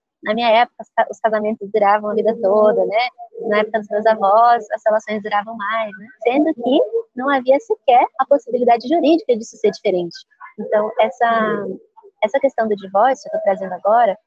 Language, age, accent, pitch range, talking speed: Portuguese, 20-39, Brazilian, 205-260 Hz, 175 wpm